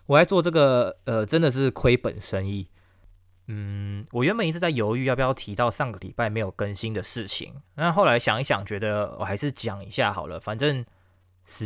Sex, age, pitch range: male, 20-39, 100-130 Hz